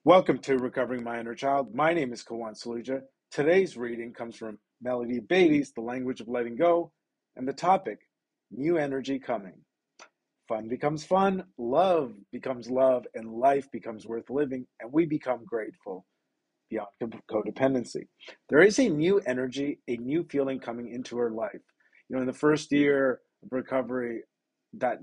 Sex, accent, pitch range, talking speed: male, American, 120-155 Hz, 160 wpm